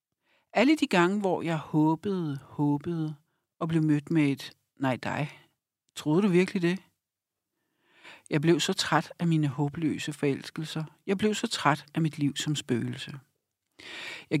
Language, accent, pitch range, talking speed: Danish, native, 145-175 Hz, 150 wpm